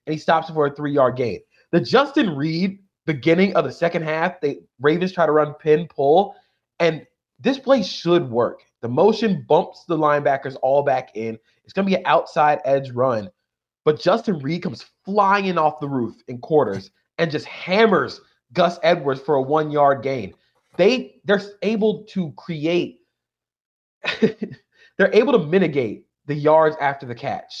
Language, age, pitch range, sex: English, 30-49, 135-175 Hz, male